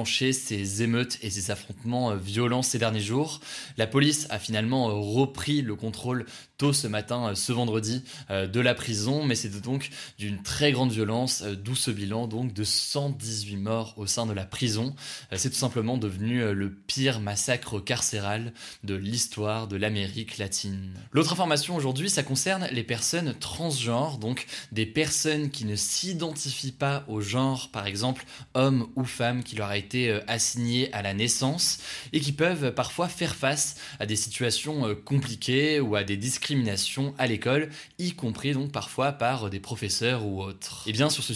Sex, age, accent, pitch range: male, 20-39, French, 110-140 Hz